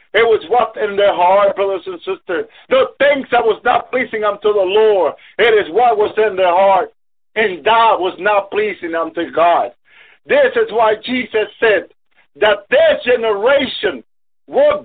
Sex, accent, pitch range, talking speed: male, American, 195-280 Hz, 165 wpm